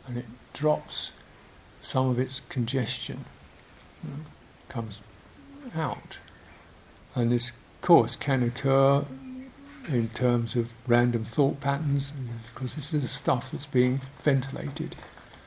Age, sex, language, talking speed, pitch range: 60-79, male, English, 125 wpm, 115-140 Hz